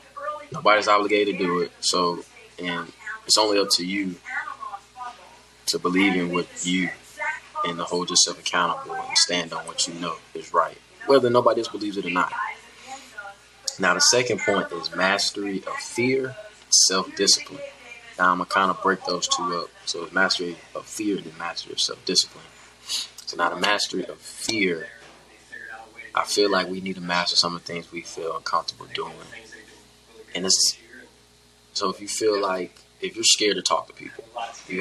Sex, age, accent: male, 20-39, American